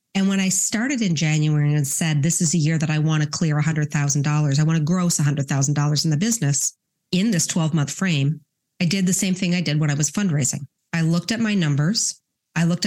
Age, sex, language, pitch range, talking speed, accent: 40-59, female, English, 150-180 Hz, 225 wpm, American